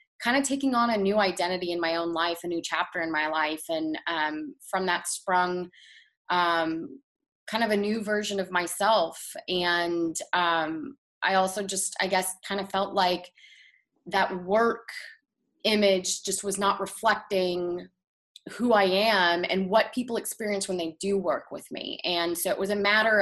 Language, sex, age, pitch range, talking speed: English, female, 20-39, 175-215 Hz, 175 wpm